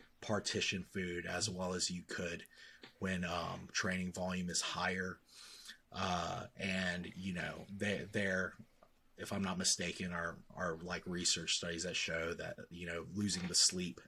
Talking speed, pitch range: 150 wpm, 90-110 Hz